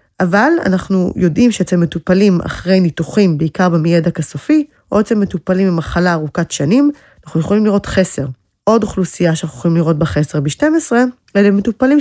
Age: 20-39